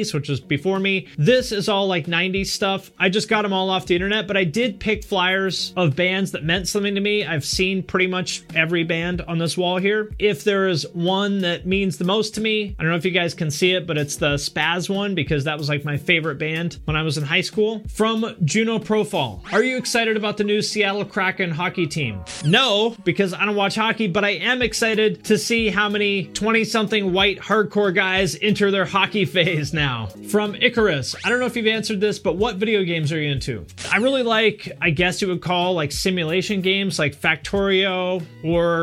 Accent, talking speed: American, 220 wpm